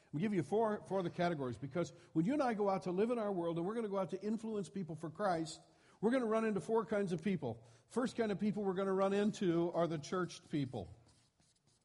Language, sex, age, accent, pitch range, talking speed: English, male, 60-79, American, 140-195 Hz, 265 wpm